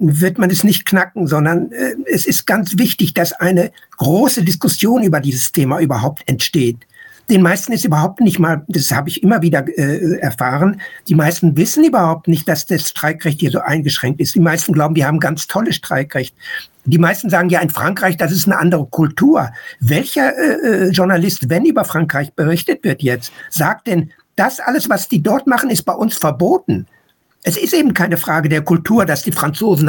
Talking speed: 195 wpm